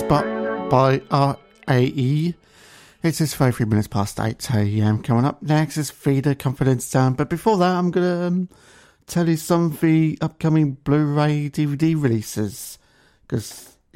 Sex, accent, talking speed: male, British, 140 wpm